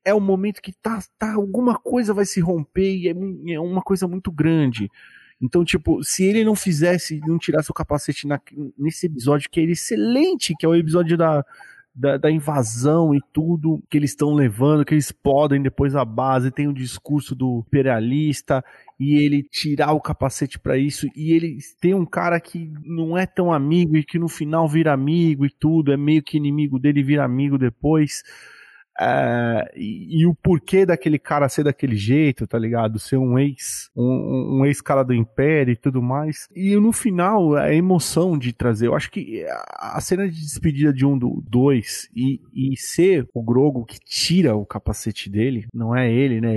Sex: male